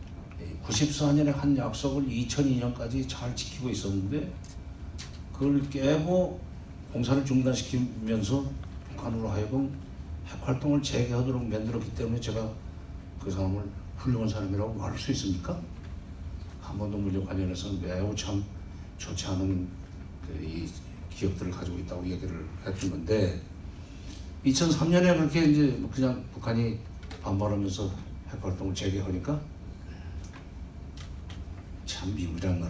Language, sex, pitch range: Korean, male, 90-125 Hz